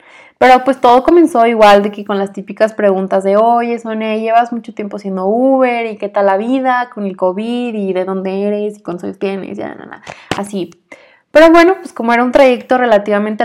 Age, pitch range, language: 20-39, 205-245 Hz, Spanish